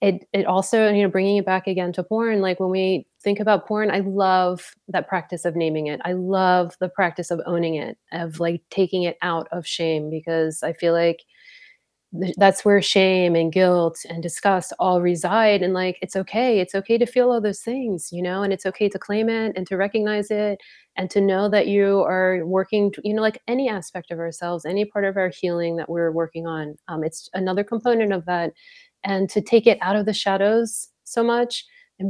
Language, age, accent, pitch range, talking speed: English, 30-49, American, 175-205 Hz, 215 wpm